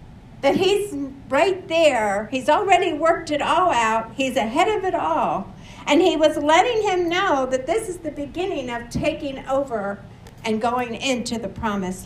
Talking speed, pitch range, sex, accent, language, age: 170 wpm, 265-355 Hz, female, American, English, 60-79